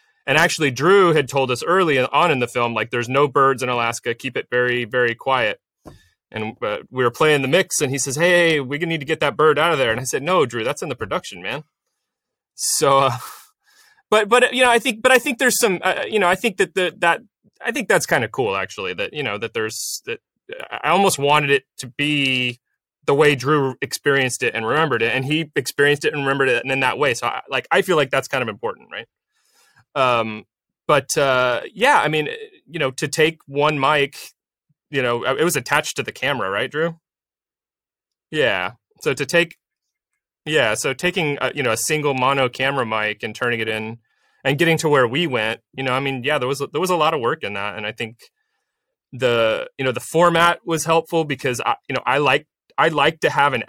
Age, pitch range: 30-49, 130-175 Hz